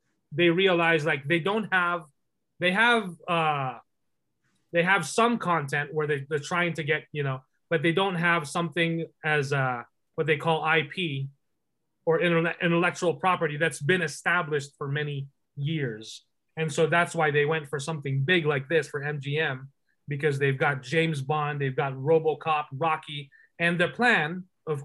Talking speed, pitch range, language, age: 165 wpm, 145-180 Hz, English, 20-39